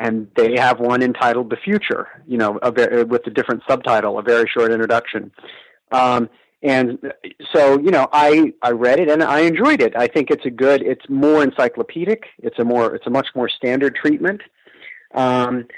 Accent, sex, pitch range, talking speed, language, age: American, male, 115-140 Hz, 190 wpm, English, 40-59